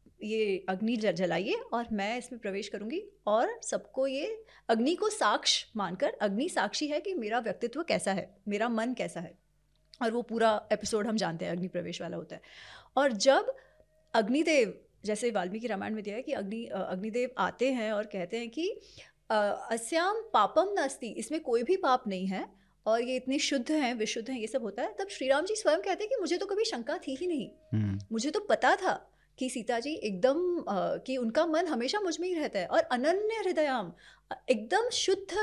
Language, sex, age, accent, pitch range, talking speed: Hindi, female, 30-49, native, 220-330 Hz, 195 wpm